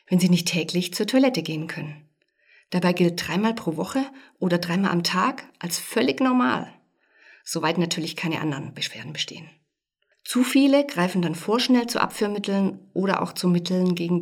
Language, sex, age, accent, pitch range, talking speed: German, female, 50-69, German, 170-195 Hz, 160 wpm